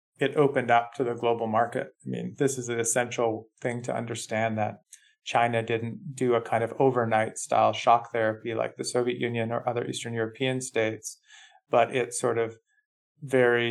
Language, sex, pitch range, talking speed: English, male, 110-125 Hz, 180 wpm